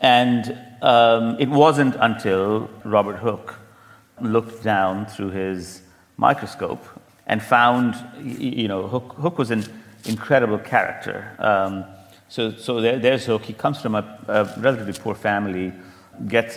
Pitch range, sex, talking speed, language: 95-115 Hz, male, 135 wpm, English